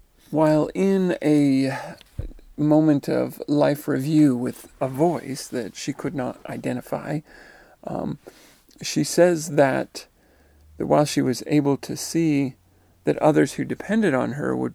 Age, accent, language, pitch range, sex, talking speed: 50-69, American, English, 90-145 Hz, male, 135 wpm